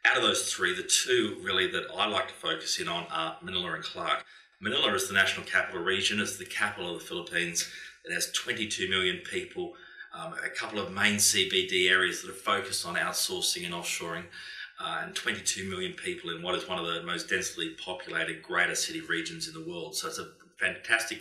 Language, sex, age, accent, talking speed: English, male, 30-49, Australian, 205 wpm